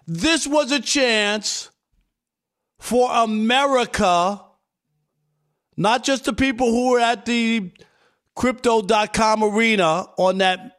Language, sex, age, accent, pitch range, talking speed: English, male, 50-69, American, 215-280 Hz, 100 wpm